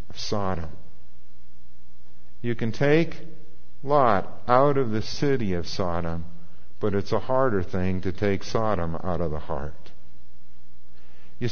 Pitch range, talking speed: 80-120 Hz, 125 wpm